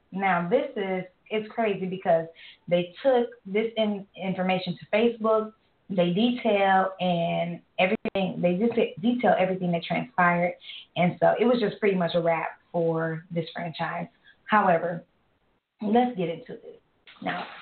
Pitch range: 170-215 Hz